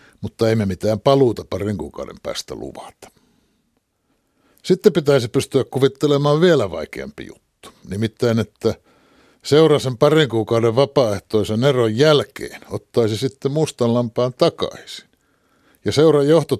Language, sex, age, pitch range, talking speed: Finnish, male, 60-79, 105-145 Hz, 115 wpm